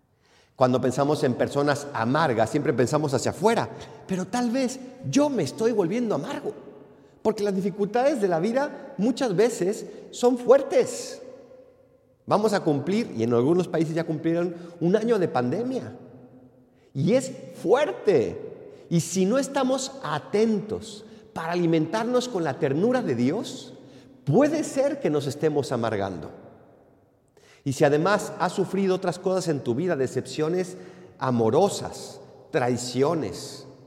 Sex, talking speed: male, 130 wpm